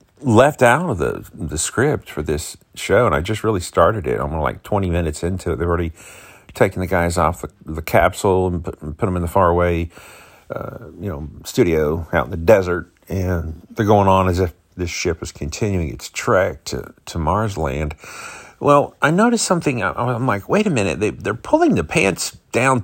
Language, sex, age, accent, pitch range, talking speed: English, male, 50-69, American, 85-120 Hz, 200 wpm